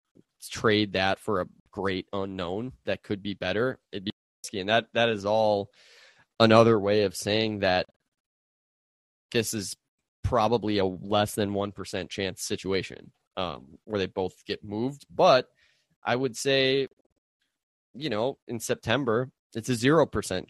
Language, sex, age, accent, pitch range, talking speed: English, male, 20-39, American, 95-110 Hz, 150 wpm